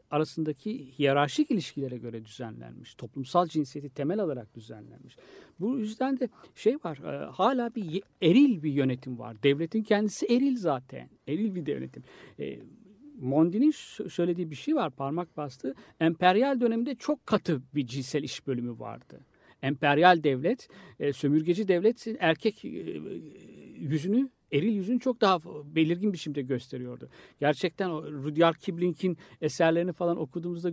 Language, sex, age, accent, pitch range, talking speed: Turkish, male, 60-79, native, 145-210 Hz, 125 wpm